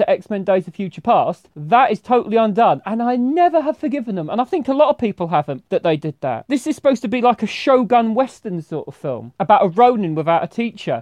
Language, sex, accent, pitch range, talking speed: English, male, British, 175-255 Hz, 245 wpm